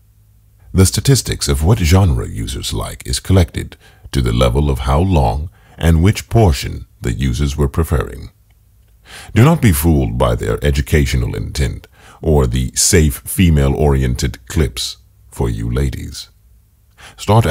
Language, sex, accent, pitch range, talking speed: English, male, American, 75-105 Hz, 135 wpm